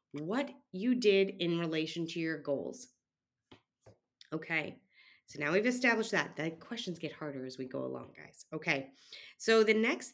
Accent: American